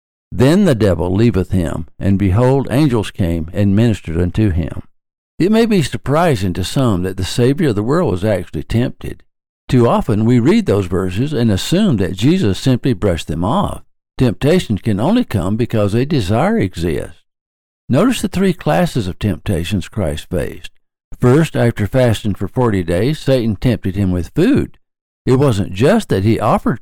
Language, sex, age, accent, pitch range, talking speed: English, male, 60-79, American, 95-130 Hz, 170 wpm